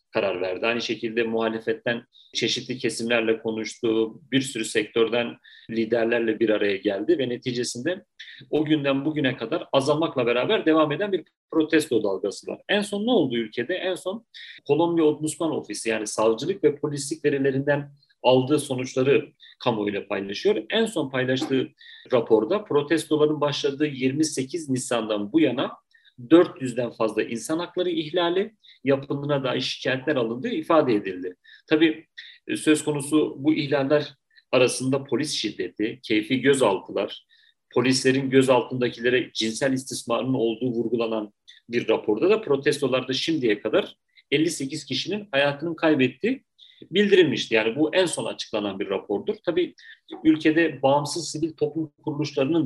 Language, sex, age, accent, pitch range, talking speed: Turkish, male, 40-59, native, 120-160 Hz, 125 wpm